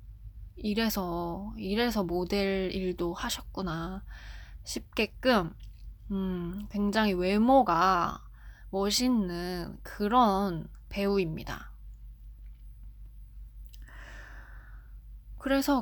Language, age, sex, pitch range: Korean, 20-39, female, 170-220 Hz